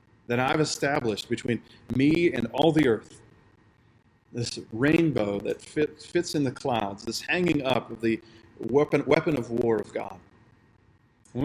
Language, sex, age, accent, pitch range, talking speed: English, male, 40-59, American, 115-150 Hz, 150 wpm